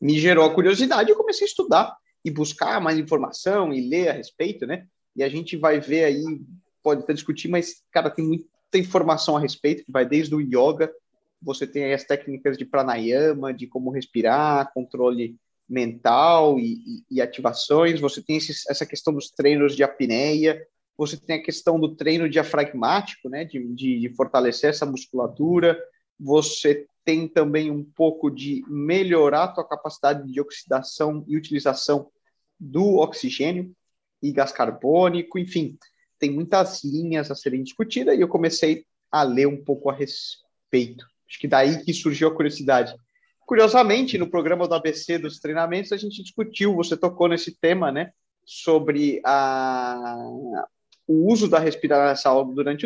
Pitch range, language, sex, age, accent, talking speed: 140-170 Hz, Portuguese, male, 30-49, Brazilian, 160 wpm